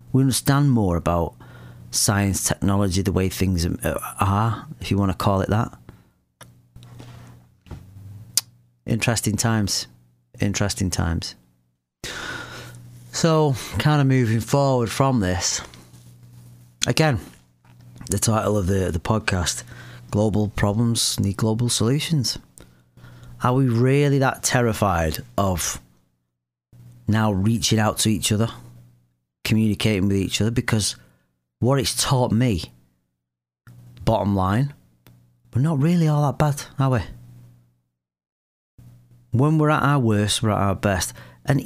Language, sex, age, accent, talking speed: English, male, 30-49, British, 115 wpm